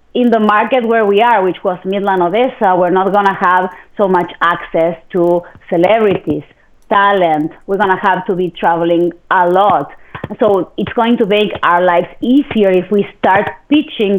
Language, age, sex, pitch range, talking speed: English, 30-49, female, 185-235 Hz, 180 wpm